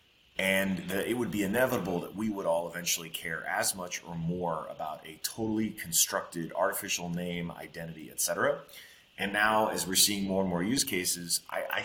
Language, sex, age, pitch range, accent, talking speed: English, male, 30-49, 85-105 Hz, American, 185 wpm